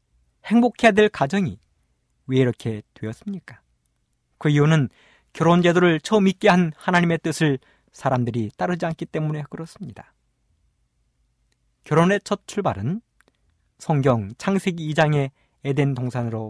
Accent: native